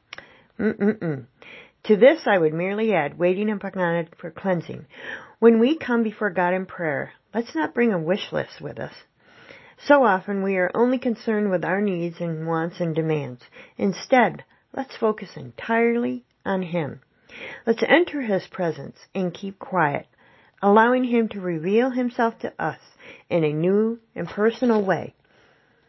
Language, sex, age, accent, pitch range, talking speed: English, female, 40-59, American, 170-230 Hz, 155 wpm